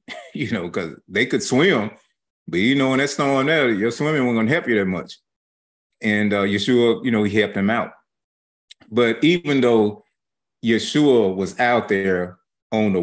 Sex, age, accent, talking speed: male, 30-49, American, 190 wpm